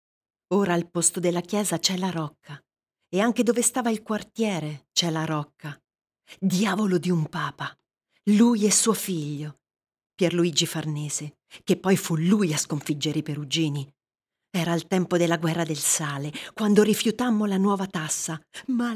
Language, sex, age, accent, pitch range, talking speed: Italian, female, 40-59, native, 155-200 Hz, 150 wpm